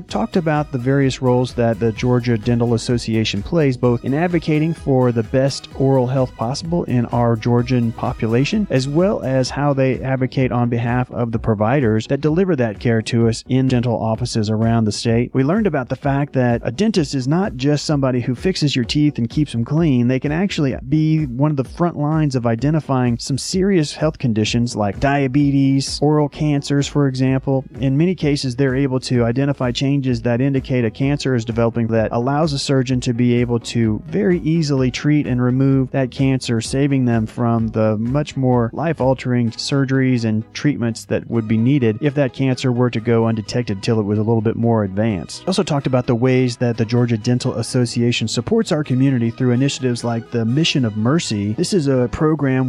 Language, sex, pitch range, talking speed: English, male, 115-145 Hz, 195 wpm